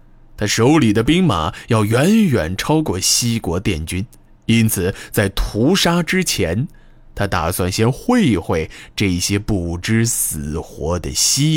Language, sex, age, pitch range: Chinese, male, 20-39, 95-130 Hz